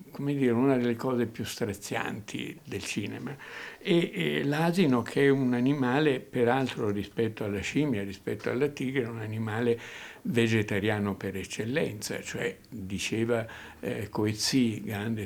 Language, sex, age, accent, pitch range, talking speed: Italian, male, 60-79, native, 110-135 Hz, 125 wpm